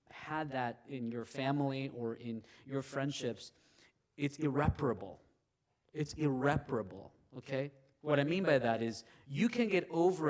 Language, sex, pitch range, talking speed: English, male, 135-175 Hz, 140 wpm